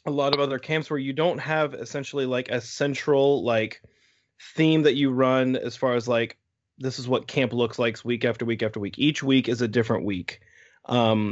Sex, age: male, 20-39